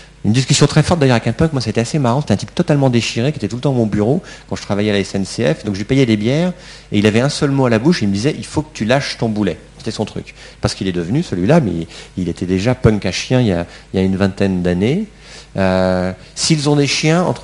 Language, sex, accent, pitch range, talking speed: French, male, French, 90-125 Hz, 310 wpm